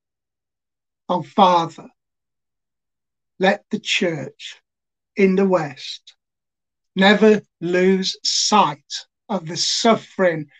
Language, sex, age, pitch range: English, male, 60-79, 170-205 Hz